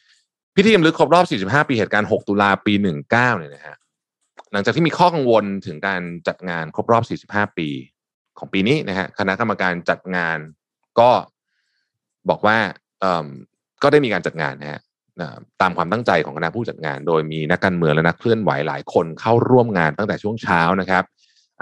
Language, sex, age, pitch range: Thai, male, 20-39, 85-110 Hz